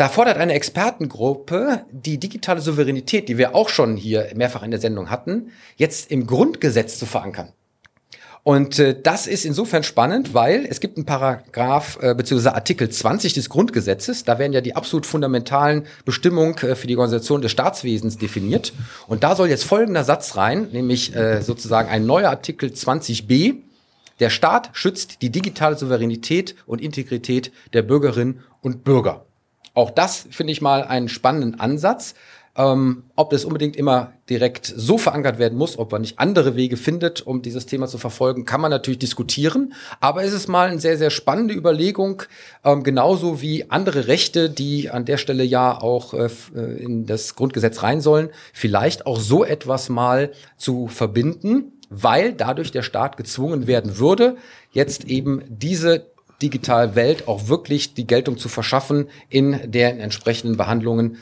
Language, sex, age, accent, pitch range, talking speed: German, male, 40-59, German, 120-155 Hz, 165 wpm